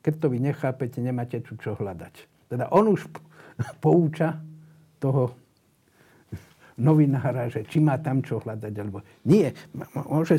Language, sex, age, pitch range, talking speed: Slovak, male, 60-79, 125-155 Hz, 155 wpm